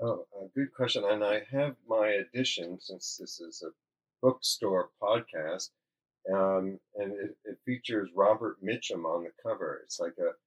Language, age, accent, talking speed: English, 40-59, American, 155 wpm